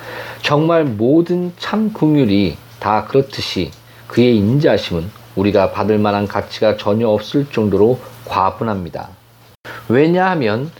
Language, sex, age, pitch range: Korean, male, 40-59, 105-135 Hz